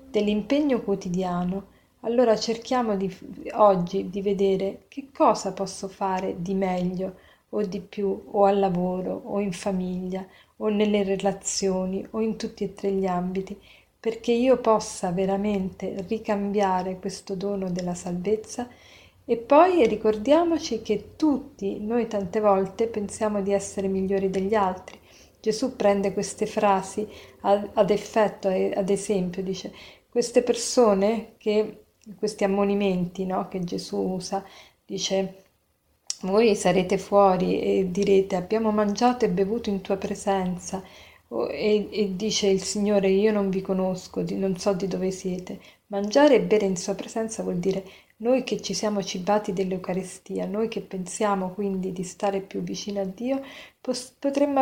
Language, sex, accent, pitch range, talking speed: Italian, female, native, 190-220 Hz, 135 wpm